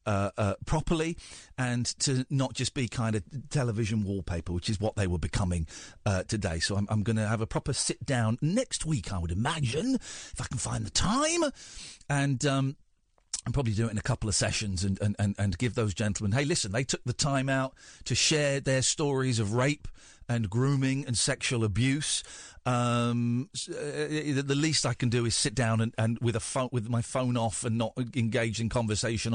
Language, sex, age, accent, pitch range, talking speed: English, male, 40-59, British, 110-150 Hz, 205 wpm